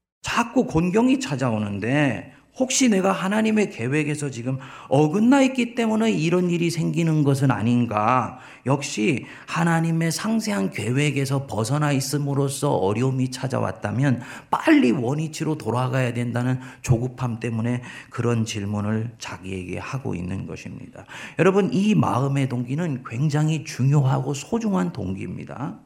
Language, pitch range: Korean, 120-170 Hz